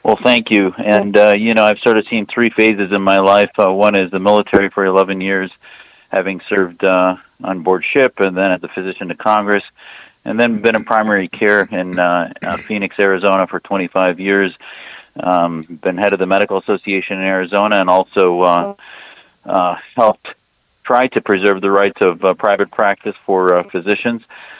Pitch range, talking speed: 95-105 Hz, 190 wpm